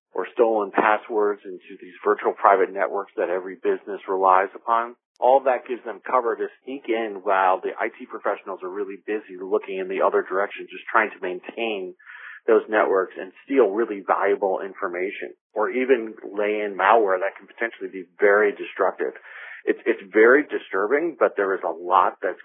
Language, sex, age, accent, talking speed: English, male, 40-59, American, 175 wpm